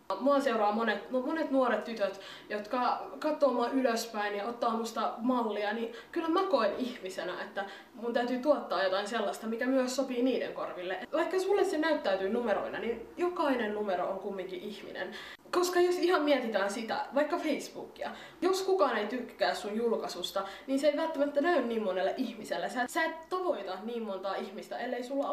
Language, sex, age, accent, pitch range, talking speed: Finnish, female, 20-39, native, 200-290 Hz, 165 wpm